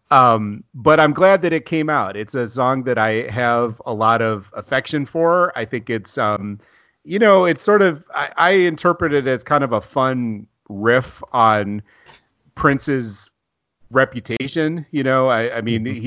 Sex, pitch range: male, 105-140 Hz